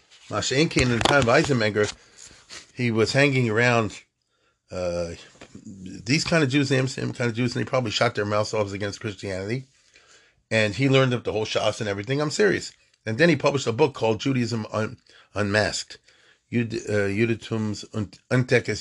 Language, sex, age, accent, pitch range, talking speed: English, male, 40-59, American, 115-155 Hz, 165 wpm